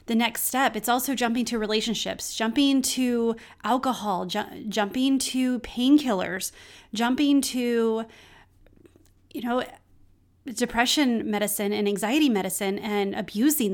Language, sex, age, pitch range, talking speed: English, female, 30-49, 210-260 Hz, 115 wpm